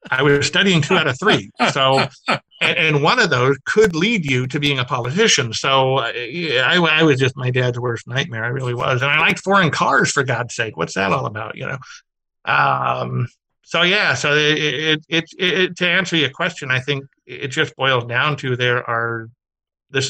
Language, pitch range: English, 120-150 Hz